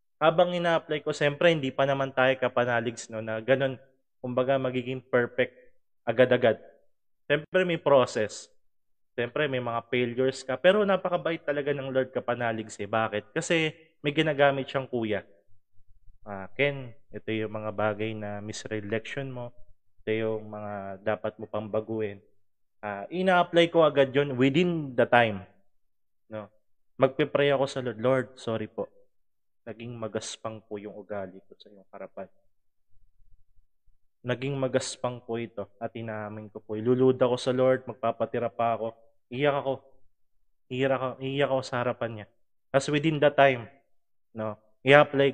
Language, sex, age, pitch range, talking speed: English, male, 20-39, 110-135 Hz, 140 wpm